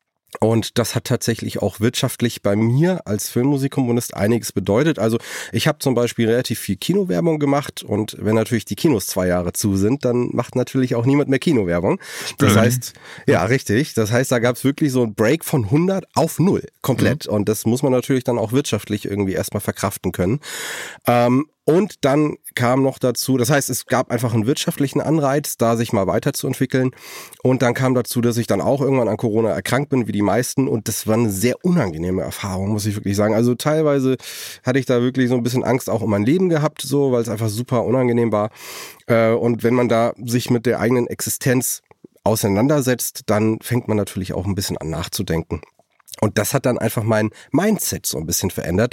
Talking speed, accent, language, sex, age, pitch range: 200 wpm, German, German, male, 30-49, 110-135 Hz